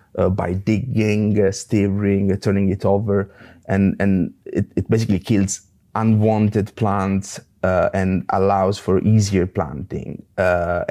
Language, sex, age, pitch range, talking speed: English, male, 30-49, 95-110 Hz, 130 wpm